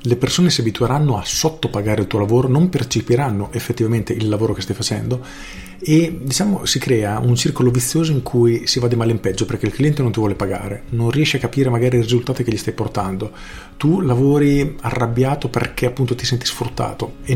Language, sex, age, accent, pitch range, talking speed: Italian, male, 40-59, native, 105-125 Hz, 205 wpm